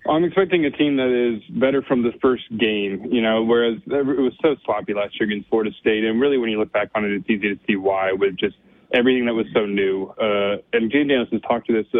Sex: male